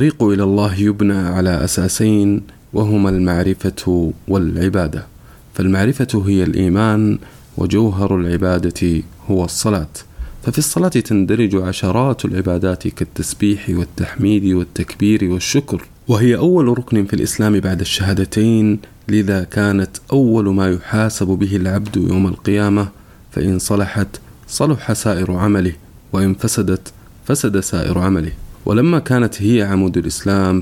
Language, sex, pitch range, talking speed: Arabic, male, 95-135 Hz, 110 wpm